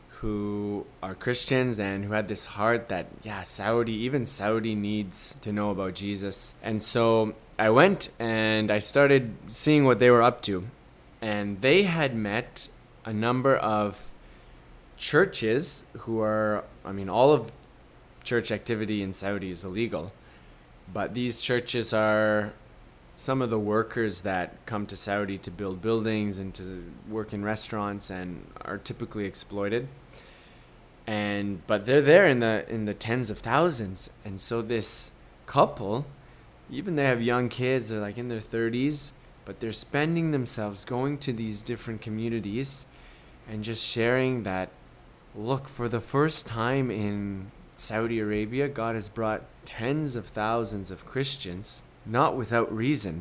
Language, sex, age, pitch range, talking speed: English, male, 20-39, 105-125 Hz, 150 wpm